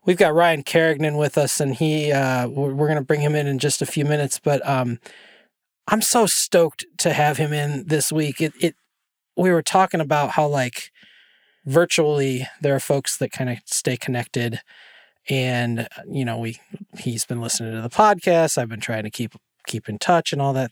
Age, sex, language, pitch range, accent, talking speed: 20-39, male, English, 130-170 Hz, American, 200 wpm